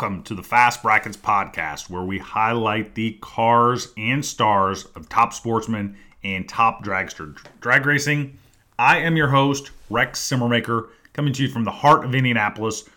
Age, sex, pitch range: 30-49, male, 110-140 Hz